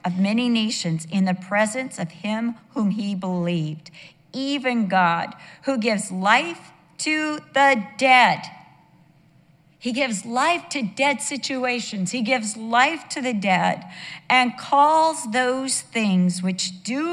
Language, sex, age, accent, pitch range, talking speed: English, female, 50-69, American, 180-250 Hz, 130 wpm